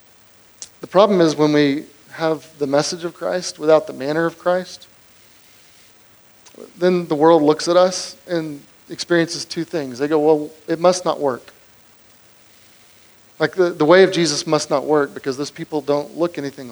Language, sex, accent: English, male, American